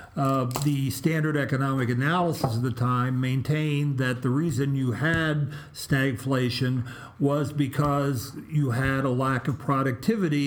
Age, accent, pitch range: 50-69, American, 120-145 Hz